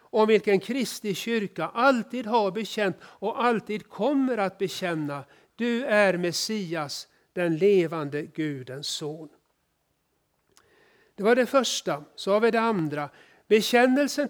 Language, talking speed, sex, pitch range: Swedish, 120 wpm, male, 175-245 Hz